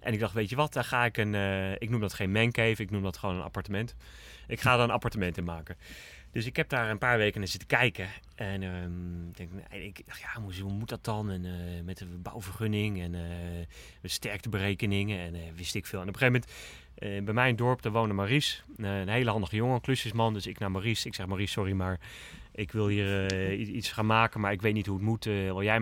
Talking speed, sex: 265 wpm, male